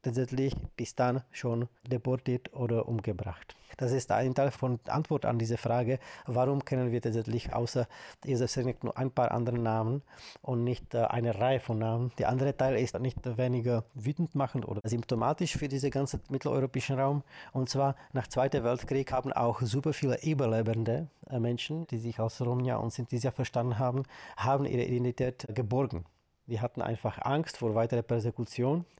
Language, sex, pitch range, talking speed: German, male, 120-135 Hz, 165 wpm